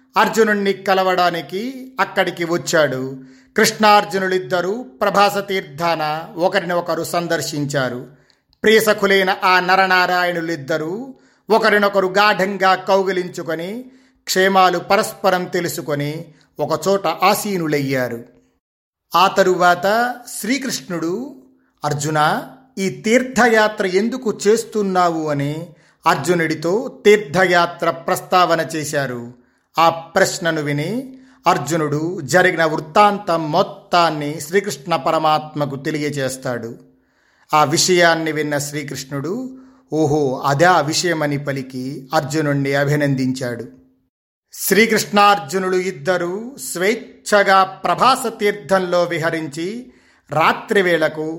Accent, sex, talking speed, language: native, male, 70 wpm, Telugu